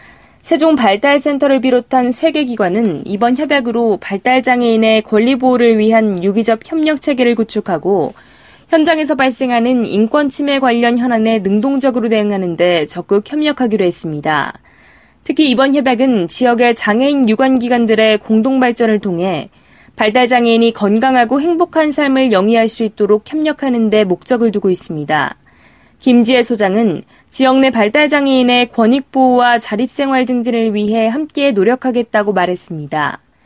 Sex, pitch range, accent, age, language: female, 210-265 Hz, native, 20-39, Korean